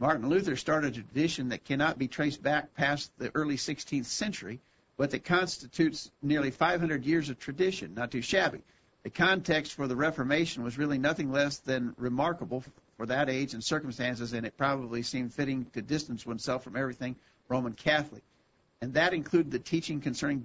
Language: English